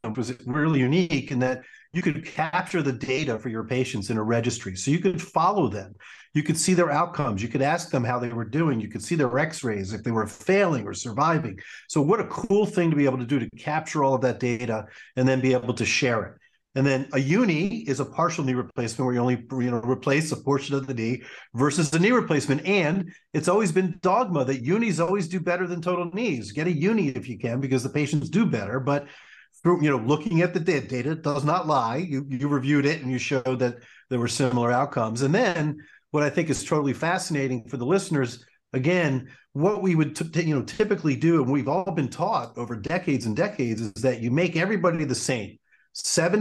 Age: 40-59